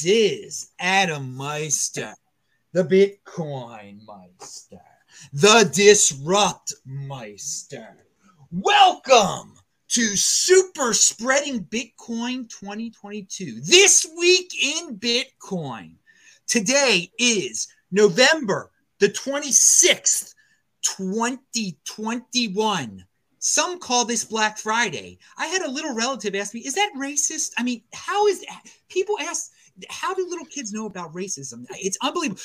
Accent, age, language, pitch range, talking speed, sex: American, 30-49, English, 195-310 Hz, 105 wpm, male